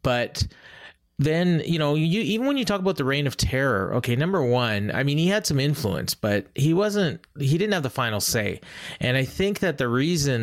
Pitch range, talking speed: 110-140 Hz, 220 wpm